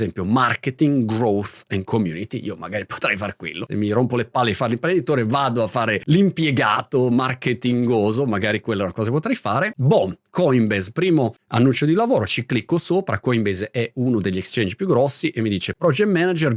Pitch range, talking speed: 105-140 Hz, 185 wpm